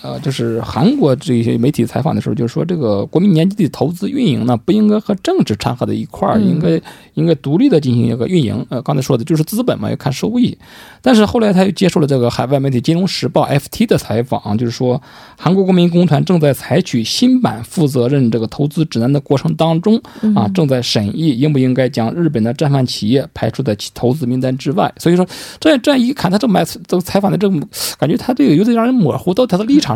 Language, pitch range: Korean, 130-190 Hz